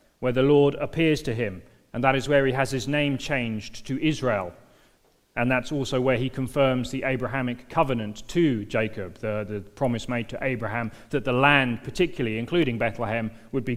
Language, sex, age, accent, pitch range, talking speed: English, male, 30-49, British, 115-145 Hz, 185 wpm